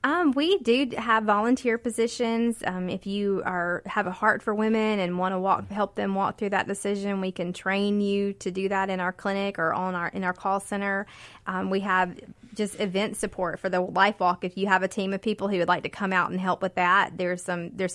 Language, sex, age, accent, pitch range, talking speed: English, female, 20-39, American, 185-205 Hz, 240 wpm